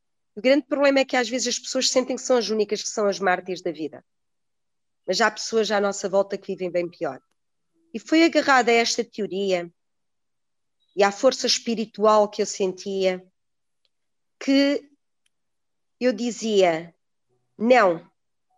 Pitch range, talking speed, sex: 195-240 Hz, 150 wpm, female